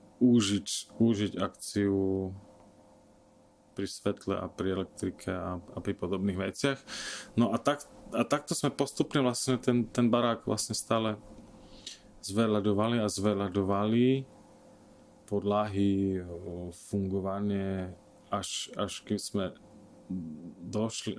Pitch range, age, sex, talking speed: 95-115 Hz, 30-49, male, 100 wpm